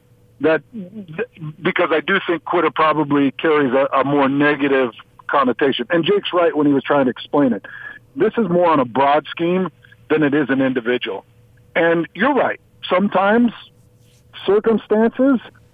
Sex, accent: male, American